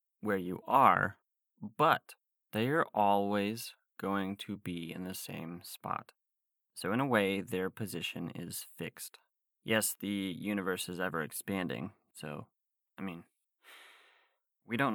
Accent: American